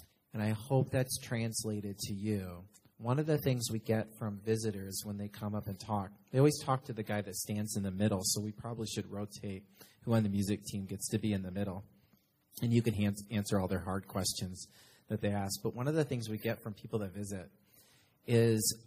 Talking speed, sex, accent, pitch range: 225 wpm, male, American, 105-120 Hz